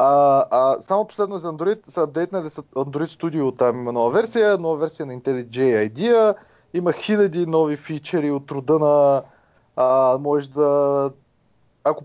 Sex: male